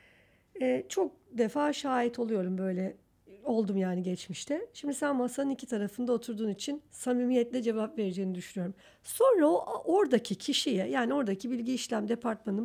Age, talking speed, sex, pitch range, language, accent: 50-69, 140 wpm, female, 215-300 Hz, Turkish, native